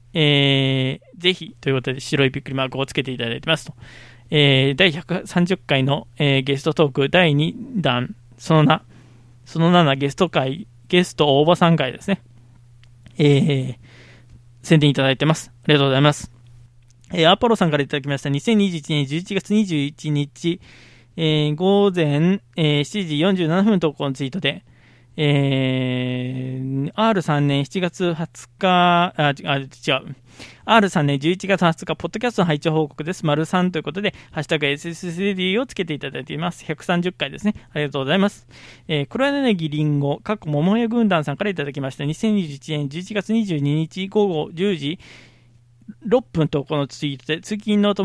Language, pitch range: Japanese, 135-180 Hz